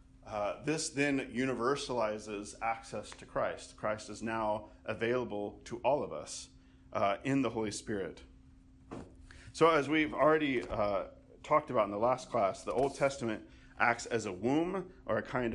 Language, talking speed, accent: English, 160 wpm, American